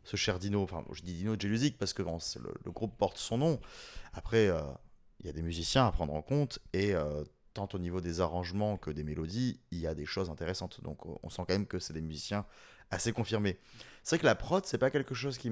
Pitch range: 90-115 Hz